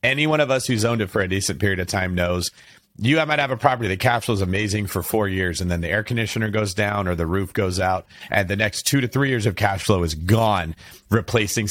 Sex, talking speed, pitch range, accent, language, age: male, 265 wpm, 95-125 Hz, American, English, 40-59